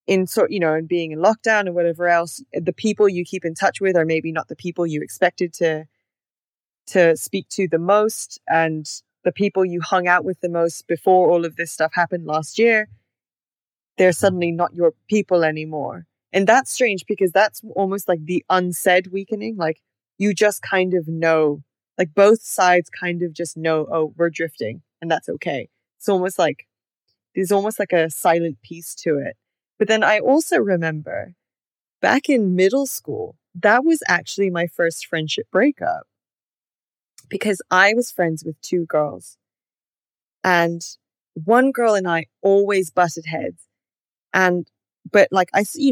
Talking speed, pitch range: 170 wpm, 165-205 Hz